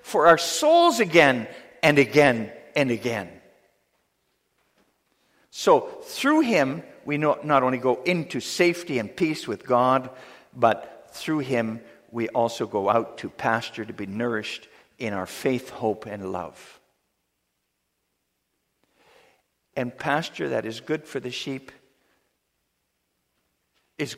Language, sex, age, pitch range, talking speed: English, male, 60-79, 115-170 Hz, 120 wpm